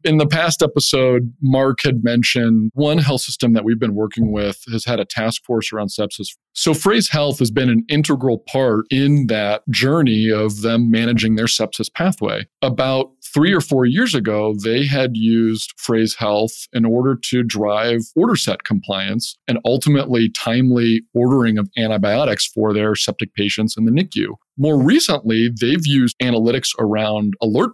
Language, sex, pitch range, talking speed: English, male, 110-135 Hz, 165 wpm